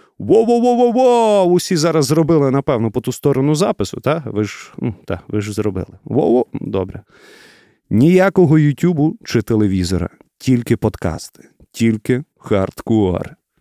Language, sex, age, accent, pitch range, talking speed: Ukrainian, male, 30-49, native, 100-150 Hz, 115 wpm